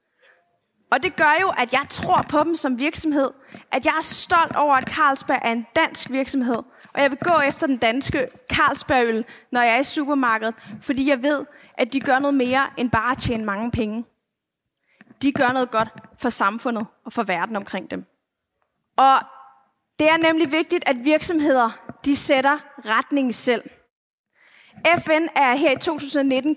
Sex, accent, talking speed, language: female, native, 170 wpm, Danish